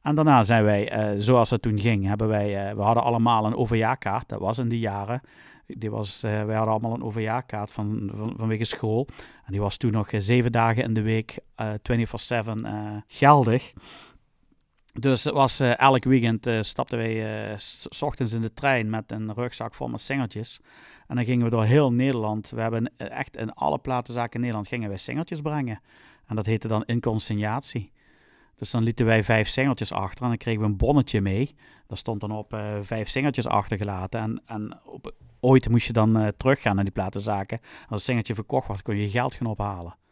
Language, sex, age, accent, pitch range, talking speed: Dutch, male, 40-59, Dutch, 105-120 Hz, 205 wpm